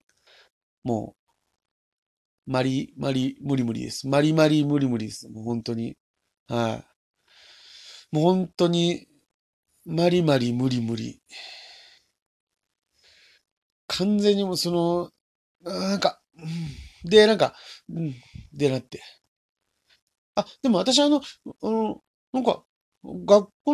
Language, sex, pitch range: Japanese, male, 135-220 Hz